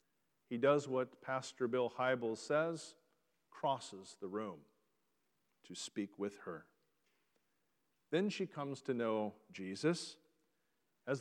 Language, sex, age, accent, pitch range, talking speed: English, male, 40-59, American, 120-165 Hz, 110 wpm